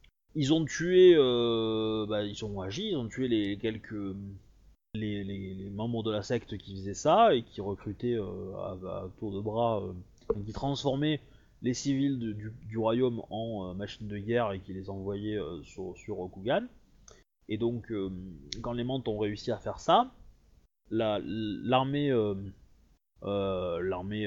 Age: 20-39